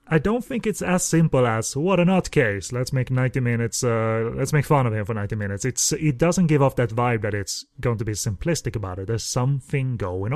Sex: male